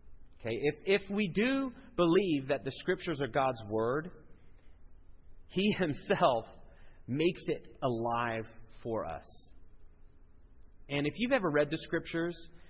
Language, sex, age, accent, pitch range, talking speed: English, male, 30-49, American, 105-155 Hz, 120 wpm